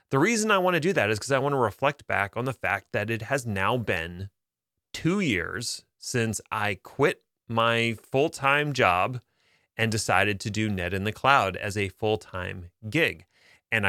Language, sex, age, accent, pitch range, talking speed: English, male, 30-49, American, 110-145 Hz, 185 wpm